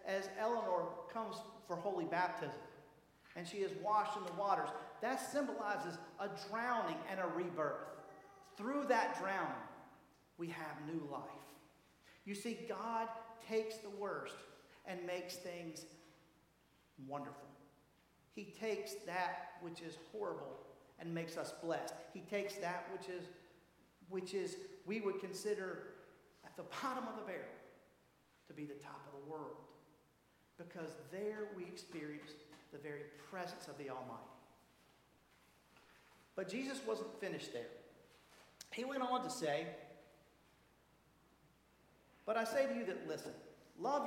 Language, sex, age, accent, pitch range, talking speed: English, male, 50-69, American, 160-220 Hz, 135 wpm